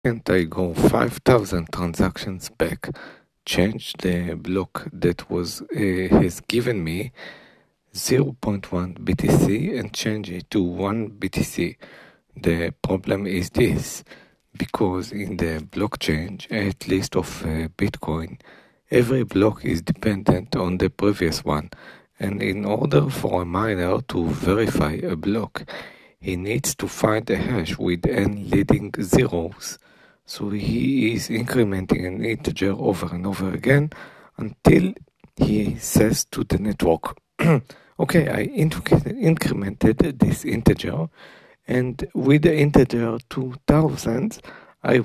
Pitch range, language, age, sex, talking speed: 90-130 Hz, English, 50-69, male, 120 wpm